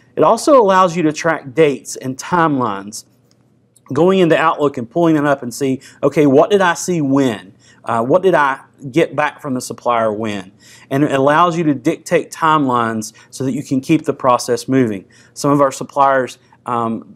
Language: English